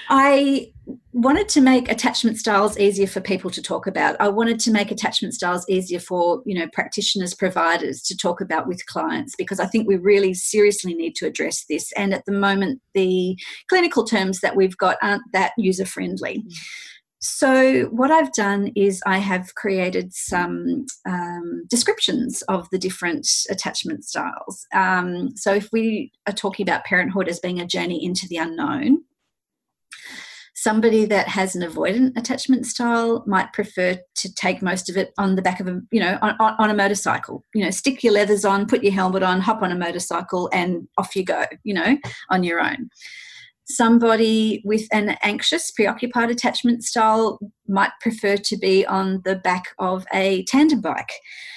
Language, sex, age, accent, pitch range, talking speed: English, female, 40-59, Australian, 185-230 Hz, 175 wpm